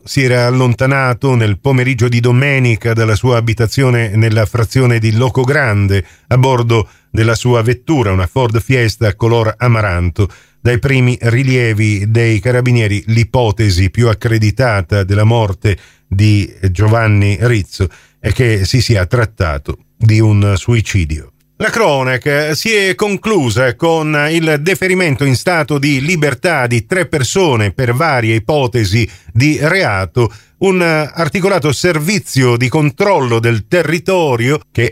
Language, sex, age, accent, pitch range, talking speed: Italian, male, 40-59, native, 110-140 Hz, 125 wpm